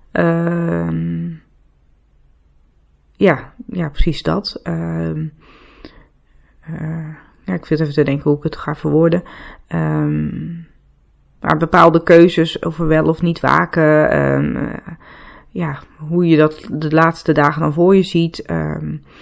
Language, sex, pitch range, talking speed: Dutch, female, 150-180 Hz, 135 wpm